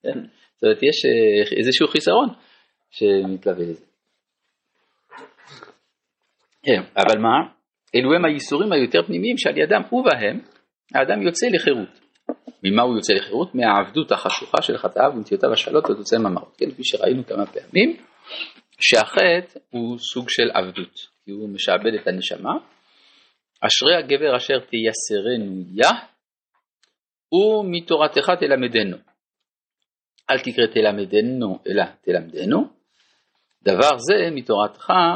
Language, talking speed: Hebrew, 105 wpm